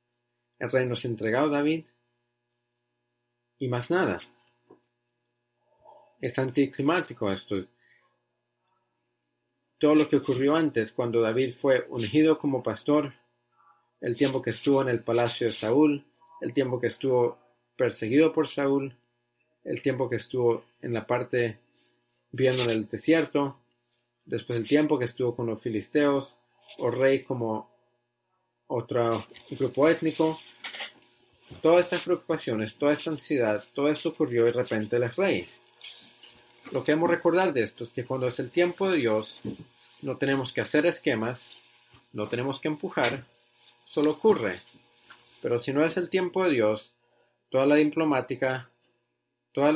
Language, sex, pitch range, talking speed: English, male, 120-145 Hz, 135 wpm